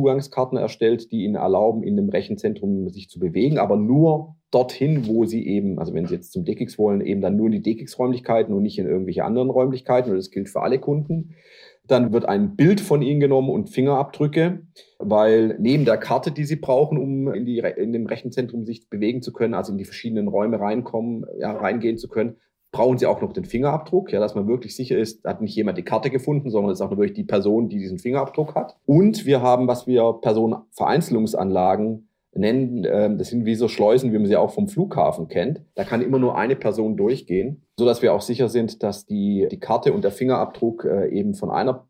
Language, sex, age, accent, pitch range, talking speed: German, male, 30-49, German, 105-140 Hz, 215 wpm